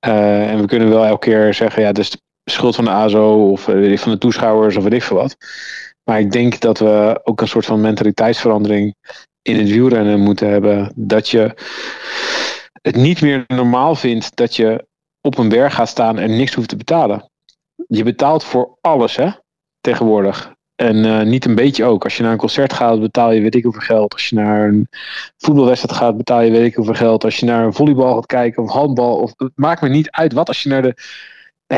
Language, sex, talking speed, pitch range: Dutch, male, 225 wpm, 110-140 Hz